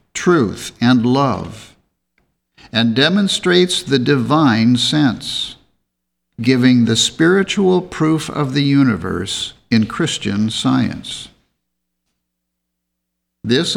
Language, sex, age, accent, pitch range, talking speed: English, male, 60-79, American, 100-145 Hz, 85 wpm